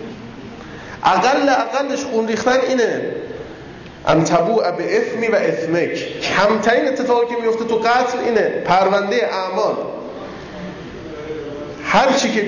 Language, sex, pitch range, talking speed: Persian, male, 155-220 Hz, 105 wpm